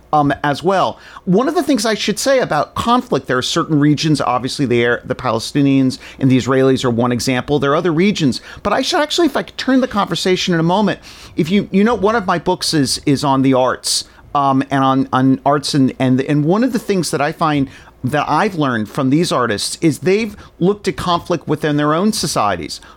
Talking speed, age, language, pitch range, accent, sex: 230 wpm, 40-59, English, 135-185 Hz, American, male